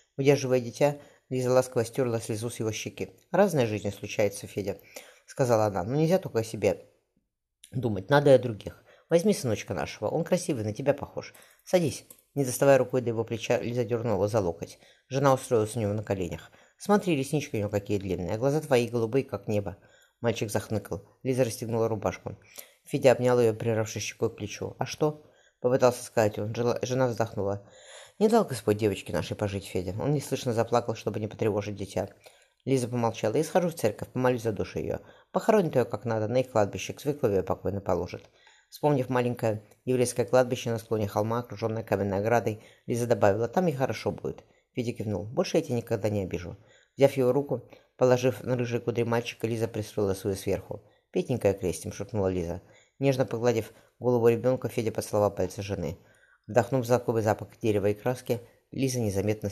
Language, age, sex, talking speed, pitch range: Russian, 20-39, female, 175 wpm, 105-130 Hz